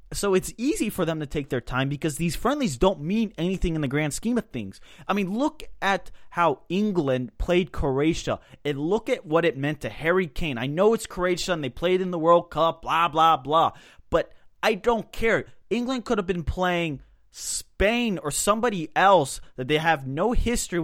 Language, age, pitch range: English, 20-39, 135-205 Hz